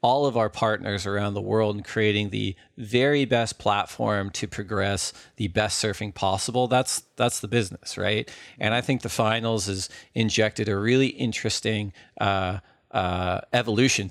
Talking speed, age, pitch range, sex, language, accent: 160 wpm, 40-59, 105-125 Hz, male, English, American